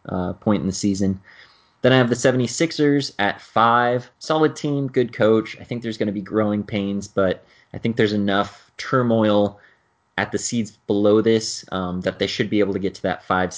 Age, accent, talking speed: 20-39, American, 205 wpm